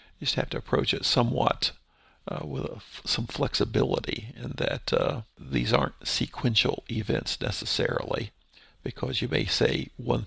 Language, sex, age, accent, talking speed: English, male, 50-69, American, 145 wpm